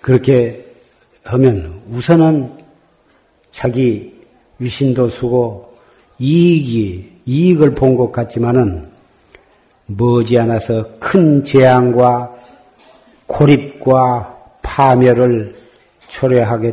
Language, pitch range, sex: Korean, 115-140 Hz, male